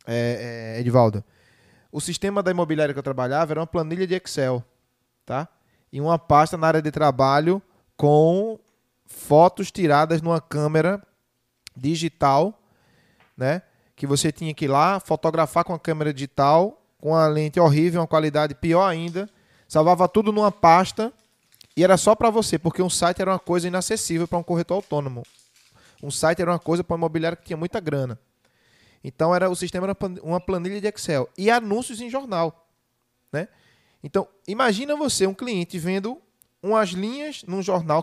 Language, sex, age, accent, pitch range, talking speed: Portuguese, male, 20-39, Brazilian, 150-195 Hz, 160 wpm